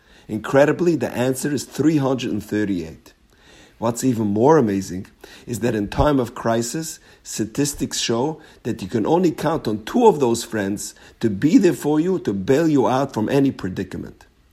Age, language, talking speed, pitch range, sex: 50-69, English, 160 wpm, 105-140 Hz, male